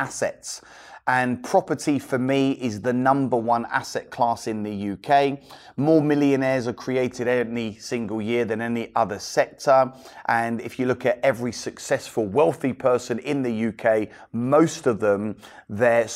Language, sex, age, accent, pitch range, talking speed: English, male, 30-49, British, 115-140 Hz, 150 wpm